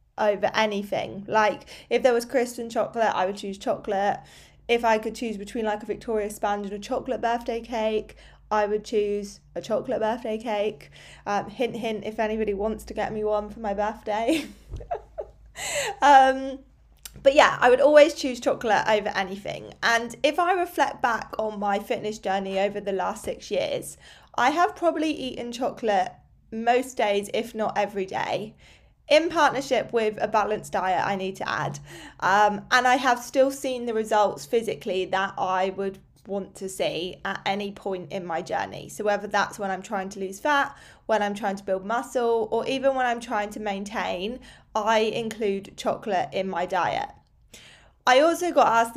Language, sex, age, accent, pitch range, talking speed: English, female, 20-39, British, 205-250 Hz, 180 wpm